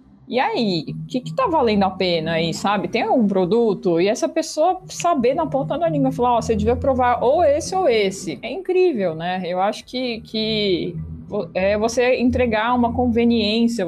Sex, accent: female, Brazilian